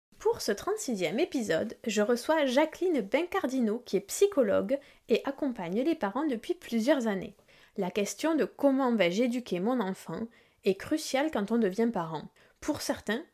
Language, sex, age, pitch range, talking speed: French, female, 20-39, 205-270 Hz, 155 wpm